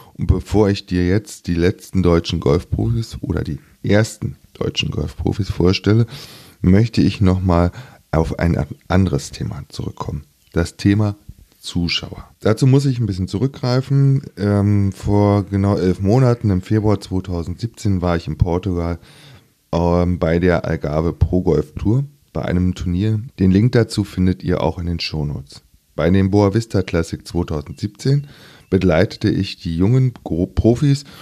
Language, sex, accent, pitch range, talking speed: German, male, German, 85-110 Hz, 140 wpm